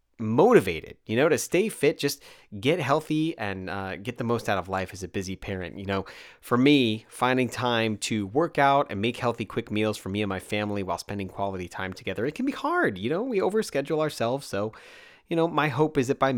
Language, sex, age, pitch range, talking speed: English, male, 30-49, 100-145 Hz, 225 wpm